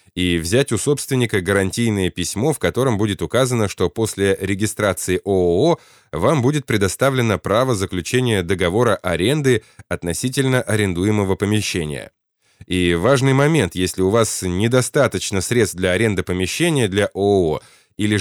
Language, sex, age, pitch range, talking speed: Russian, male, 20-39, 95-120 Hz, 125 wpm